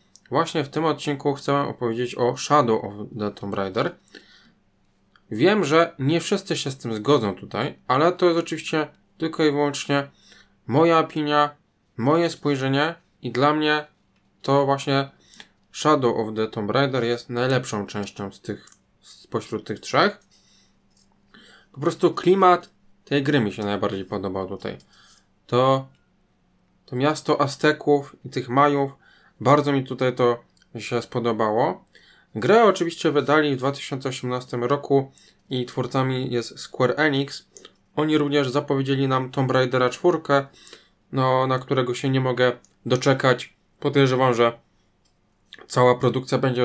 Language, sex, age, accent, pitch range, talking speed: Polish, male, 20-39, native, 120-145 Hz, 130 wpm